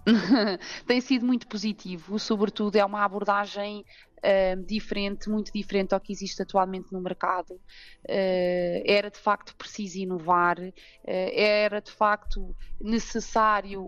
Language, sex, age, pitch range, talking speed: Portuguese, female, 20-39, 185-220 Hz, 110 wpm